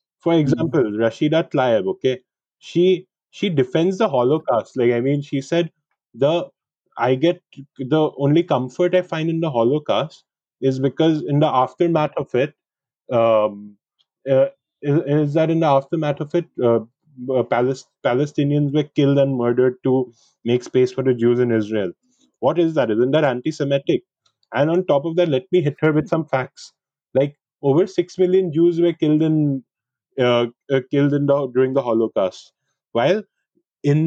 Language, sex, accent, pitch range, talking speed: English, male, Indian, 130-160 Hz, 165 wpm